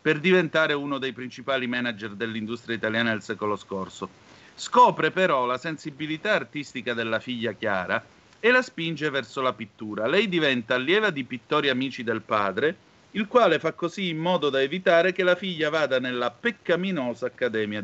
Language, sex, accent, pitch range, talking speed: Italian, male, native, 120-165 Hz, 160 wpm